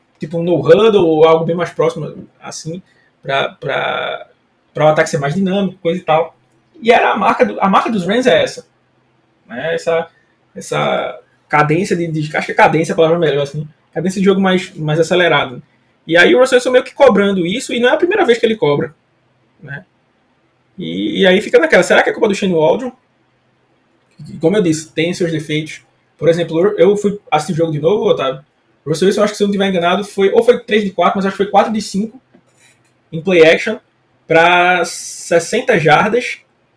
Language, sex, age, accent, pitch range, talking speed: Portuguese, male, 20-39, Brazilian, 160-215 Hz, 205 wpm